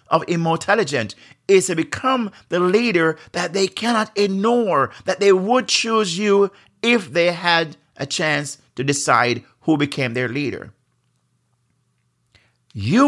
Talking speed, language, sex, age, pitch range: 135 wpm, English, male, 50-69, 125-185 Hz